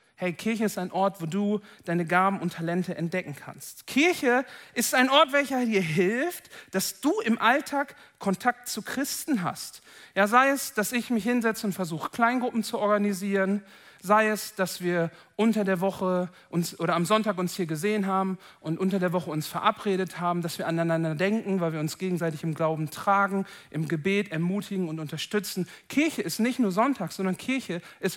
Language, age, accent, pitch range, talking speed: German, 40-59, German, 175-225 Hz, 185 wpm